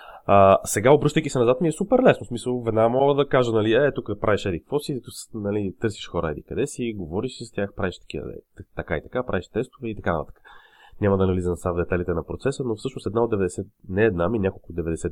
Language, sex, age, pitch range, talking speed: Bulgarian, male, 30-49, 90-110 Hz, 240 wpm